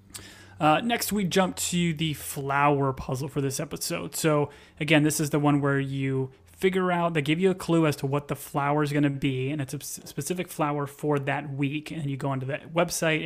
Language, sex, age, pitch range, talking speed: English, male, 30-49, 140-155 Hz, 220 wpm